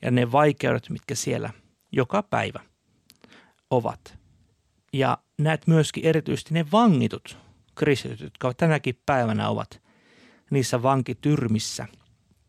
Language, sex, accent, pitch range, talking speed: Finnish, male, native, 110-140 Hz, 100 wpm